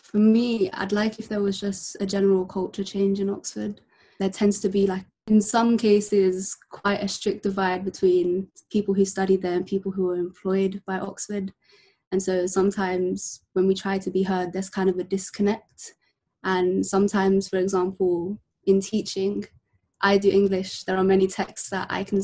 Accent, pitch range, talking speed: British, 185-200 Hz, 185 wpm